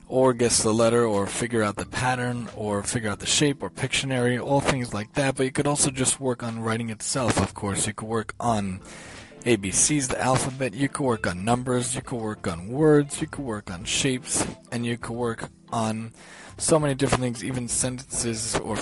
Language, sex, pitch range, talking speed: English, male, 105-130 Hz, 205 wpm